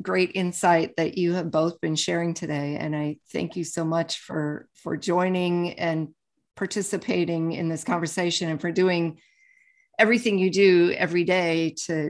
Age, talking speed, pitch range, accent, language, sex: 50-69, 160 wpm, 165-205 Hz, American, English, female